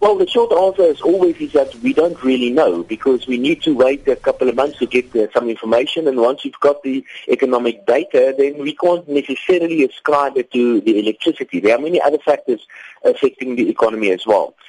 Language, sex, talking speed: English, male, 215 wpm